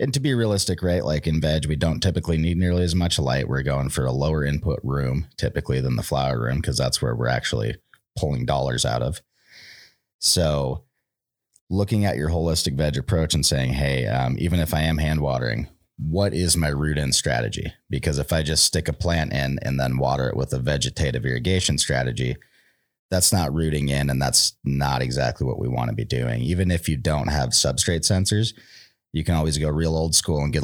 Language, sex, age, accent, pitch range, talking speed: English, male, 30-49, American, 70-90 Hz, 210 wpm